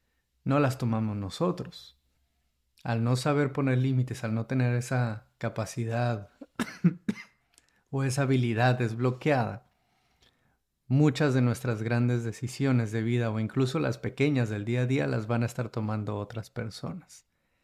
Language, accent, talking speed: Spanish, Mexican, 135 wpm